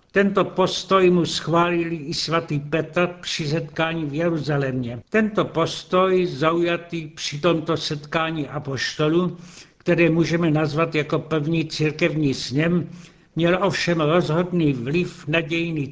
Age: 70-89